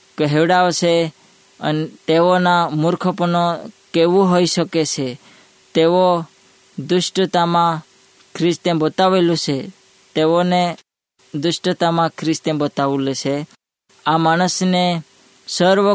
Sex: female